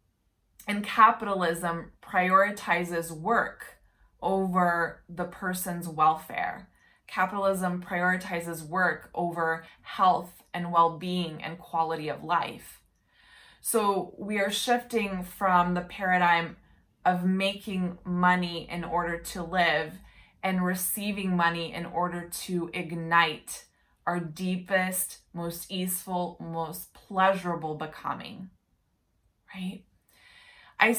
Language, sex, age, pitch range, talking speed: English, female, 20-39, 170-195 Hz, 95 wpm